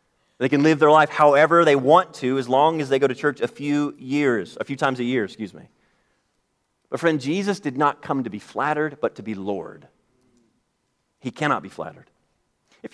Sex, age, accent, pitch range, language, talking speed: male, 30-49, American, 125-165 Hz, English, 205 wpm